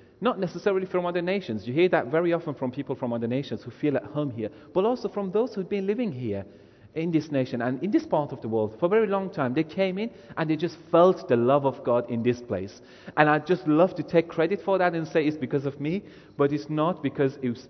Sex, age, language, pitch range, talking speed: male, 40-59, English, 125-180 Hz, 265 wpm